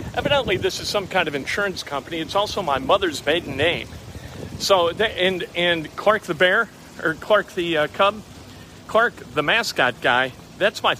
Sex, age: male, 50-69